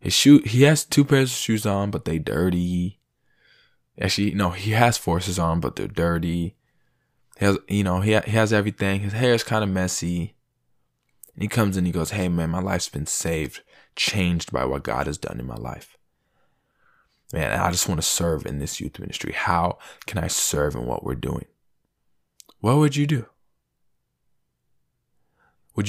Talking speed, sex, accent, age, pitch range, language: 175 wpm, male, American, 20-39, 85-110 Hz, English